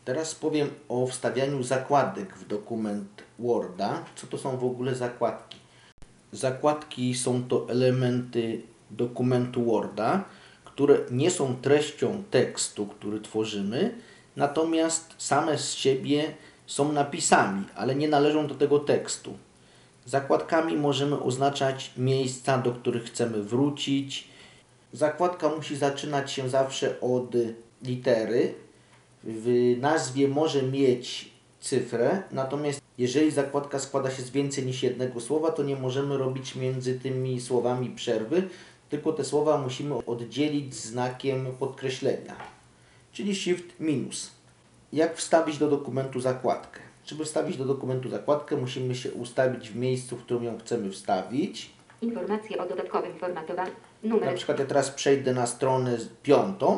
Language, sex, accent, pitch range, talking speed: Polish, male, native, 125-145 Hz, 125 wpm